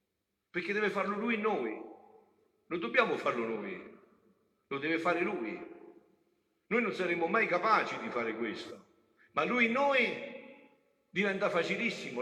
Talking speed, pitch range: 135 wpm, 175-275 Hz